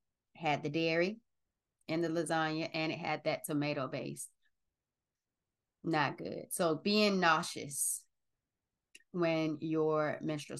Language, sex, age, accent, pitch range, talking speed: English, female, 20-39, American, 150-175 Hz, 115 wpm